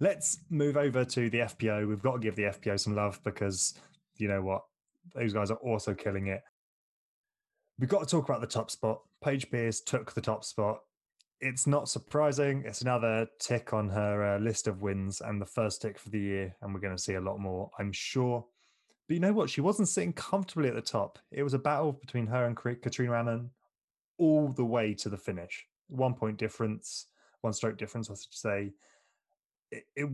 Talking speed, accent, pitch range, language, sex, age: 205 wpm, British, 105-130 Hz, English, male, 20-39